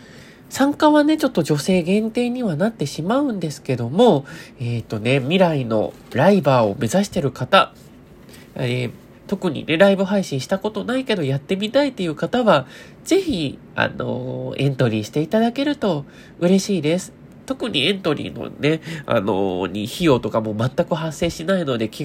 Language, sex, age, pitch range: Japanese, male, 20-39, 125-210 Hz